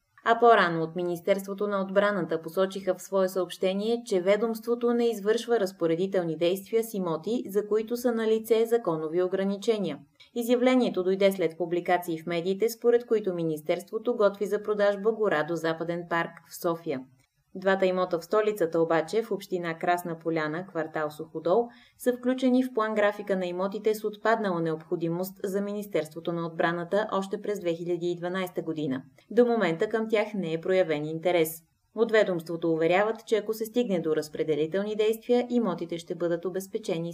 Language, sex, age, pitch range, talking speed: Bulgarian, female, 20-39, 165-215 Hz, 150 wpm